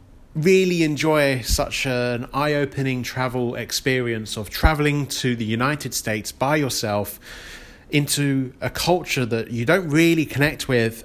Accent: British